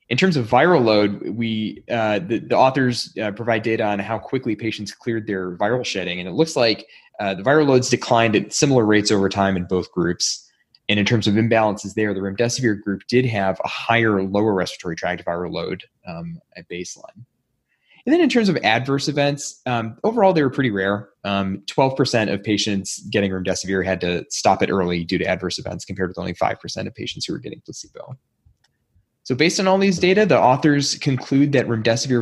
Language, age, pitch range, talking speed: English, 20-39, 100-130 Hz, 200 wpm